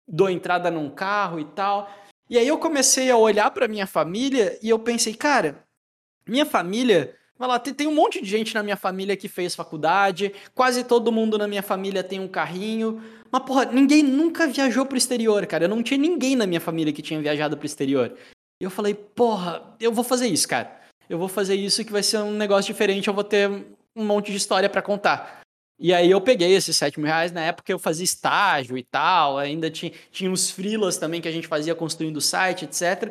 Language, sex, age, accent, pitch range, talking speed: Portuguese, male, 20-39, Brazilian, 175-230 Hz, 220 wpm